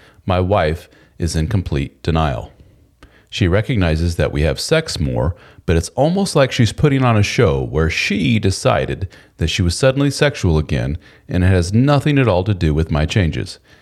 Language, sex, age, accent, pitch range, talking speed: English, male, 40-59, American, 85-115 Hz, 180 wpm